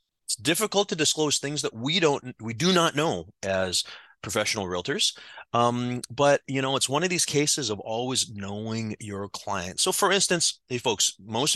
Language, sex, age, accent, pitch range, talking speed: English, male, 30-49, American, 110-145 Hz, 180 wpm